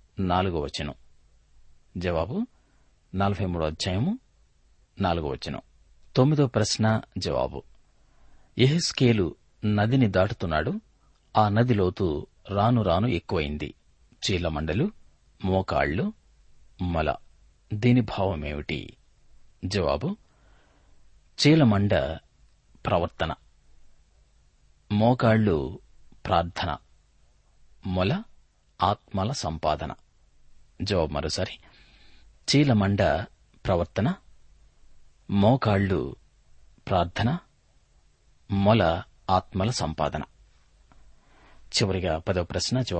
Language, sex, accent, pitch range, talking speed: Telugu, male, native, 75-110 Hz, 50 wpm